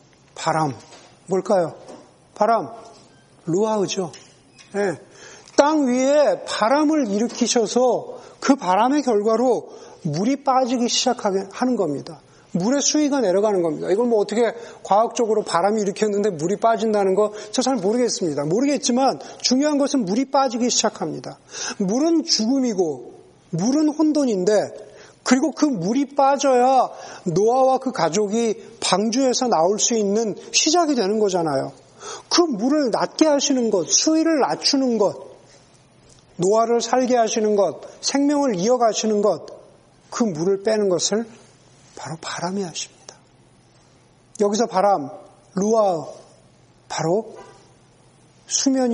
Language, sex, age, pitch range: Korean, male, 40-59, 190-260 Hz